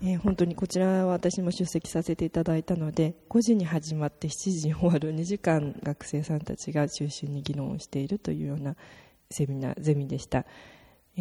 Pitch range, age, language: 145-180 Hz, 20-39, Japanese